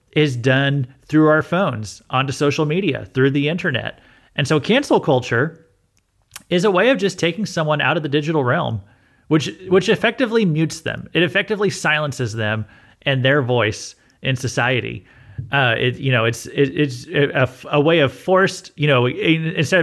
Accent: American